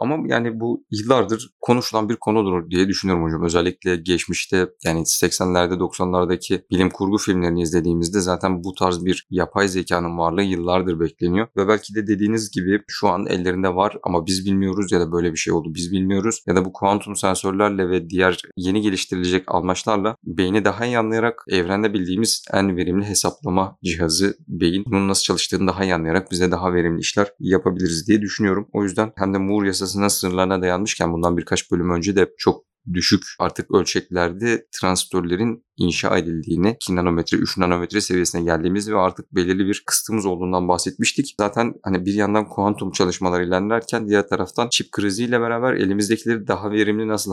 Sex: male